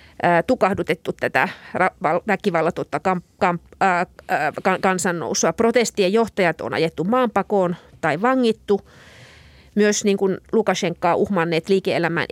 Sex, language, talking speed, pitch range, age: female, Finnish, 75 wpm, 170-210 Hz, 30-49